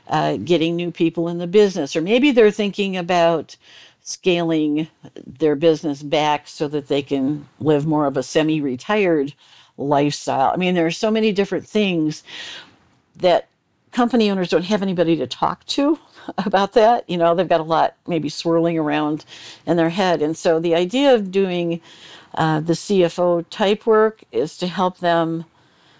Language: English